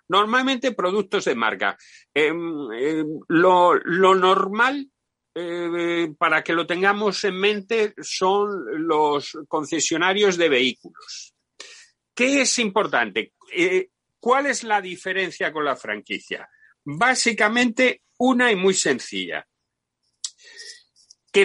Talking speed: 105 wpm